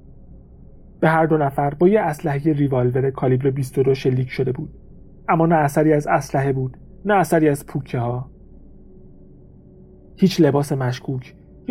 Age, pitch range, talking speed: 40-59, 125-165 Hz, 140 wpm